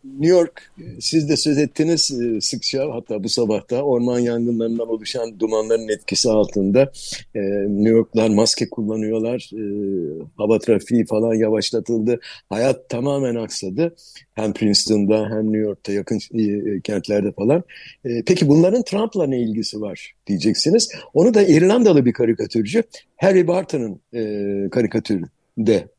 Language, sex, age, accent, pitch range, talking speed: Turkish, male, 60-79, native, 110-180 Hz, 120 wpm